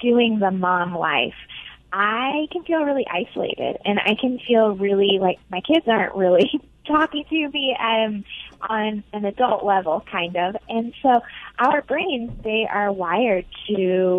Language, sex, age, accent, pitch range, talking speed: English, female, 20-39, American, 180-225 Hz, 155 wpm